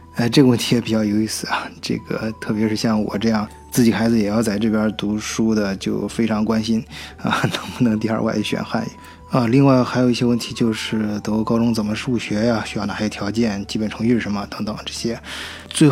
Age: 20-39